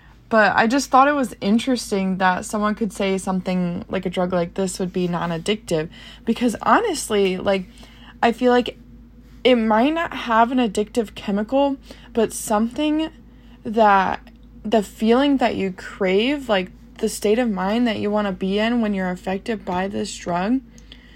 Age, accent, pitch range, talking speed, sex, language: 20-39, American, 185-230 Hz, 165 wpm, female, English